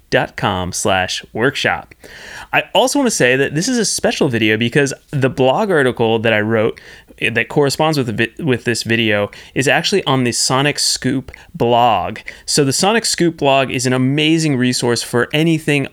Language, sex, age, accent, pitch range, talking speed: English, male, 30-49, American, 115-150 Hz, 180 wpm